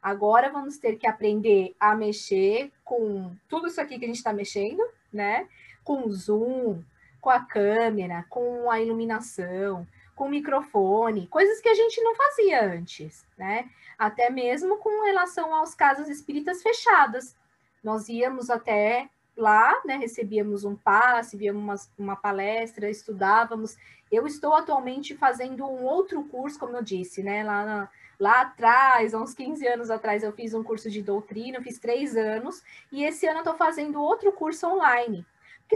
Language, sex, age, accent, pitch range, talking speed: Portuguese, female, 20-39, Brazilian, 215-280 Hz, 160 wpm